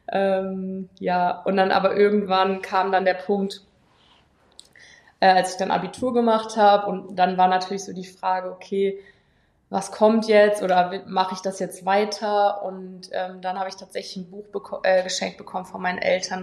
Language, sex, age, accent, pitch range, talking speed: German, female, 20-39, German, 185-200 Hz, 170 wpm